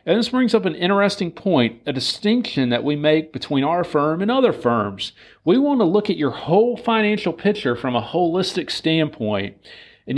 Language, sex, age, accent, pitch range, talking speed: English, male, 40-59, American, 140-205 Hz, 190 wpm